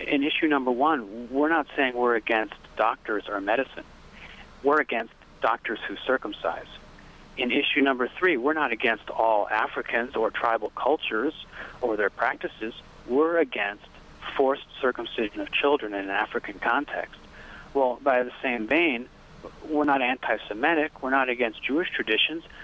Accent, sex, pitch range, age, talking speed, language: American, male, 115-140 Hz, 40-59, 145 wpm, English